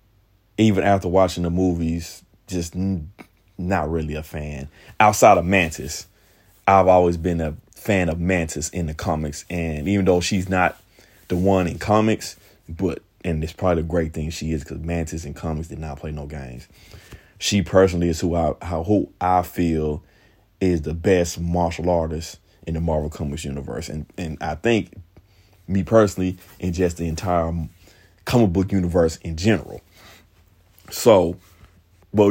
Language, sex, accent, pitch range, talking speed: English, male, American, 85-100 Hz, 160 wpm